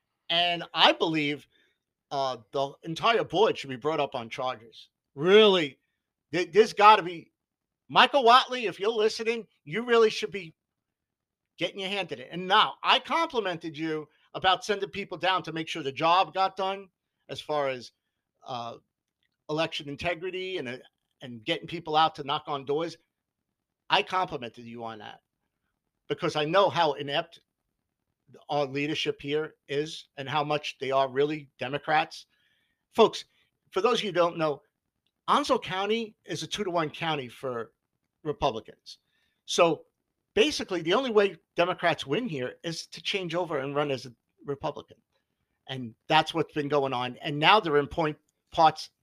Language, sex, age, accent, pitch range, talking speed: English, male, 50-69, American, 145-185 Hz, 160 wpm